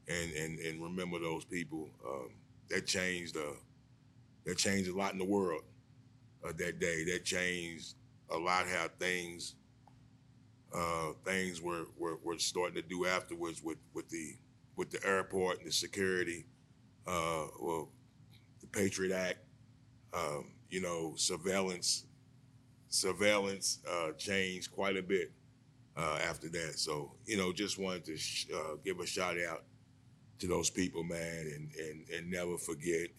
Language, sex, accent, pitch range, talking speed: English, male, American, 90-120 Hz, 150 wpm